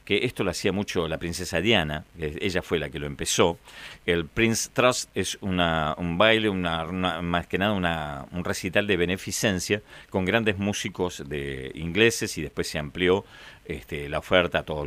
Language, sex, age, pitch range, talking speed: Spanish, male, 40-59, 85-115 Hz, 180 wpm